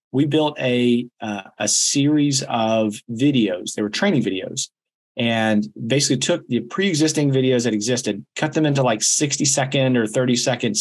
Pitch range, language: 120-145 Hz, English